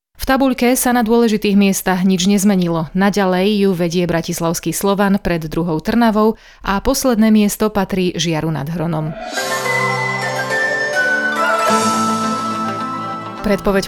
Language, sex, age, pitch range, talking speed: Slovak, female, 30-49, 175-220 Hz, 105 wpm